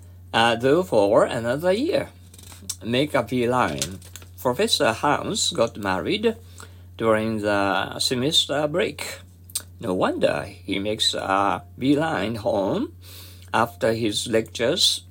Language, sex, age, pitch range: Japanese, male, 50-69, 90-130 Hz